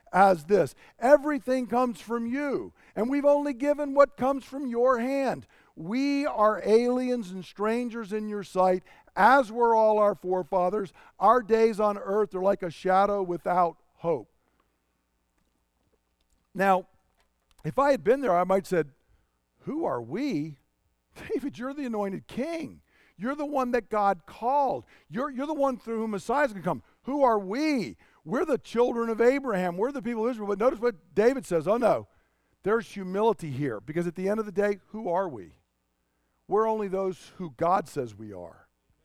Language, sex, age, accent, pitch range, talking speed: English, male, 50-69, American, 175-240 Hz, 170 wpm